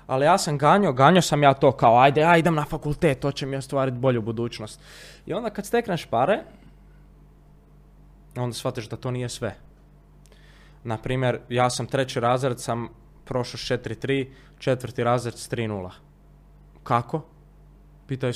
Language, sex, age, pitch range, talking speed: Croatian, male, 20-39, 115-150 Hz, 150 wpm